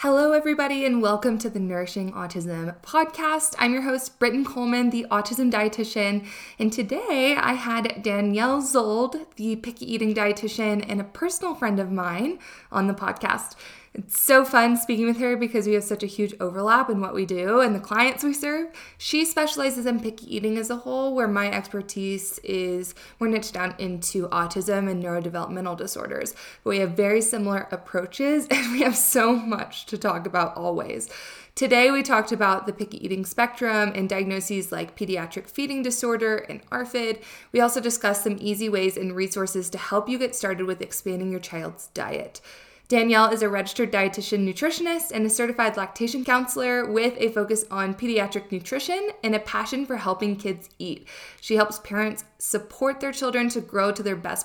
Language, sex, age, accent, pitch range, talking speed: English, female, 20-39, American, 200-250 Hz, 180 wpm